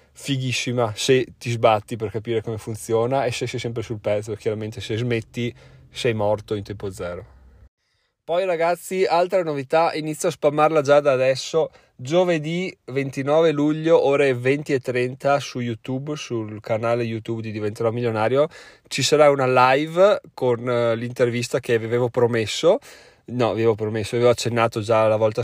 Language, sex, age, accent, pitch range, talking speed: Italian, male, 20-39, native, 115-145 Hz, 155 wpm